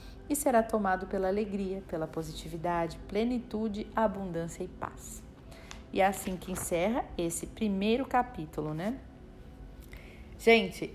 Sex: female